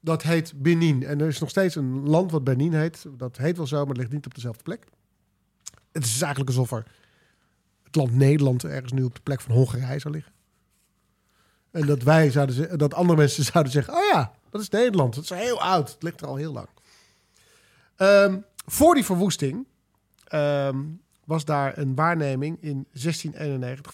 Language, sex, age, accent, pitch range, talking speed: Dutch, male, 40-59, Dutch, 135-170 Hz, 195 wpm